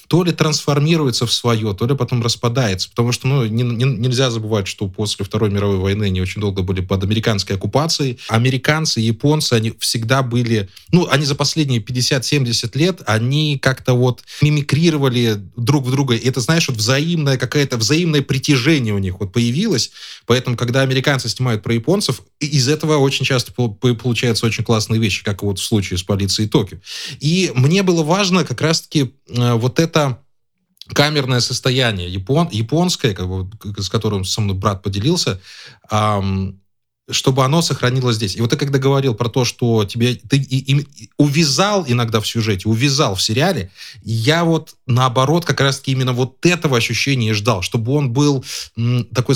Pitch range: 110-145 Hz